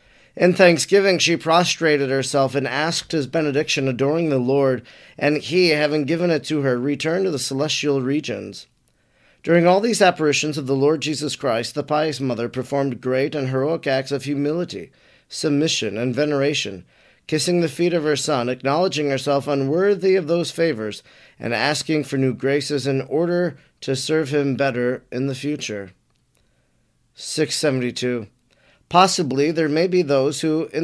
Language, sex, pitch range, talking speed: English, male, 135-165 Hz, 155 wpm